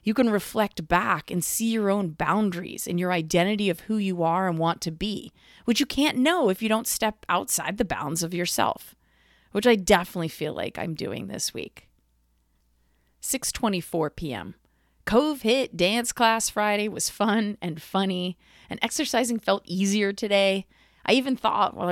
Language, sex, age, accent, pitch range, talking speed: English, female, 30-49, American, 165-225 Hz, 170 wpm